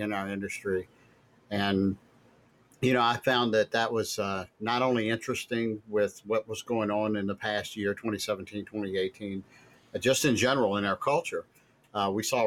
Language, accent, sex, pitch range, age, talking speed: English, American, male, 100-120 Hz, 50-69, 175 wpm